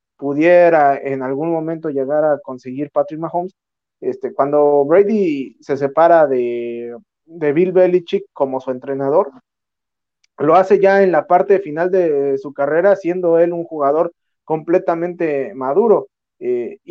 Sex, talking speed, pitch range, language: male, 130 wpm, 140-190 Hz, Spanish